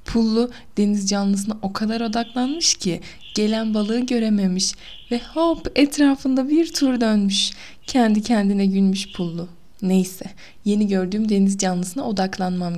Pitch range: 185-245 Hz